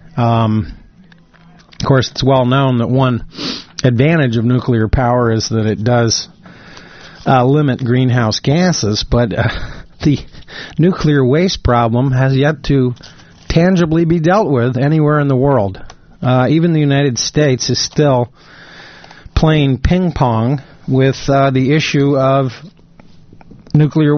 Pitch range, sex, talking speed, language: 115-140 Hz, male, 130 wpm, English